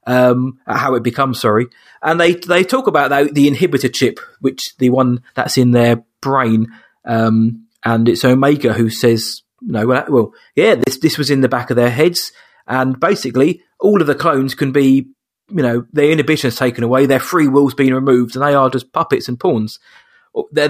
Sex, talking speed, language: male, 195 wpm, English